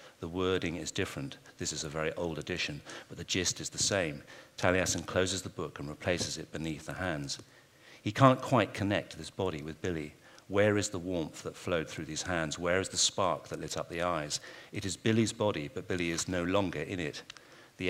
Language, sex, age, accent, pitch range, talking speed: English, male, 50-69, British, 80-100 Hz, 215 wpm